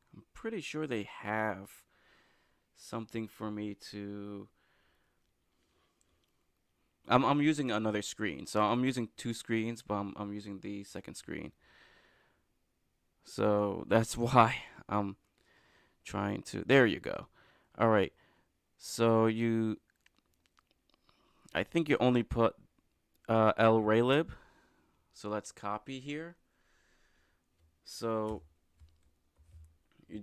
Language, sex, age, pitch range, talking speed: English, male, 20-39, 85-115 Hz, 105 wpm